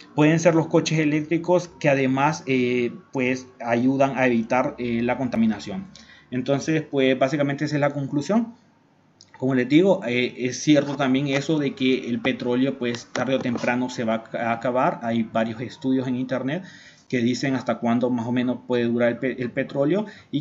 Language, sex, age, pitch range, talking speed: Spanish, male, 30-49, 120-150 Hz, 180 wpm